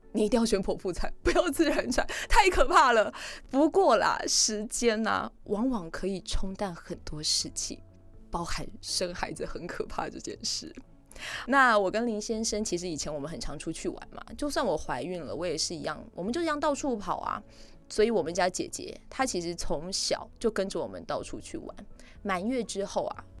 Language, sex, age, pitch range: Chinese, female, 20-39, 175-245 Hz